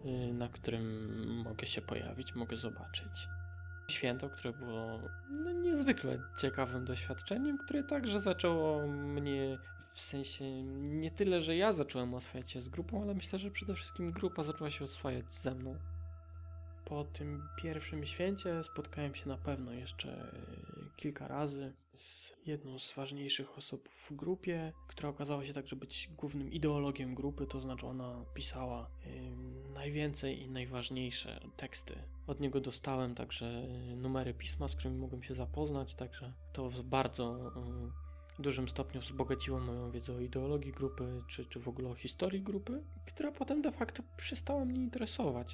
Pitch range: 90-150 Hz